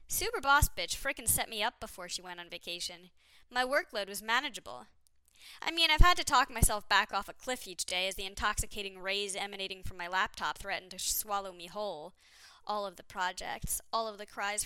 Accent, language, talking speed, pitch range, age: American, English, 205 wpm, 185-275 Hz, 10-29